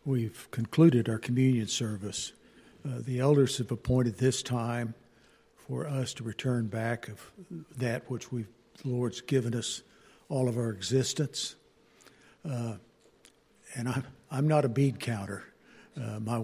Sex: male